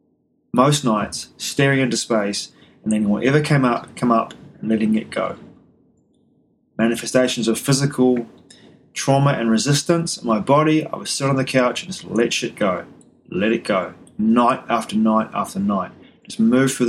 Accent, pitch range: Australian, 115-145 Hz